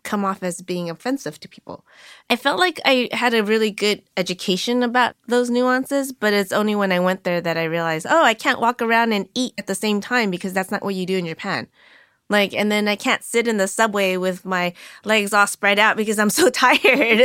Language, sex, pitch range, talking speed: English, female, 180-230 Hz, 235 wpm